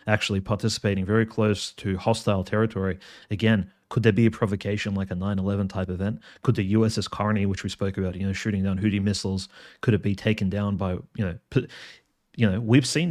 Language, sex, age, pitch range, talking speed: English, male, 30-49, 95-110 Hz, 200 wpm